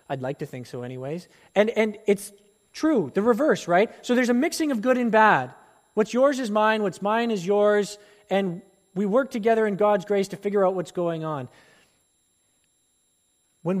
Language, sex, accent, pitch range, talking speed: English, male, American, 160-215 Hz, 185 wpm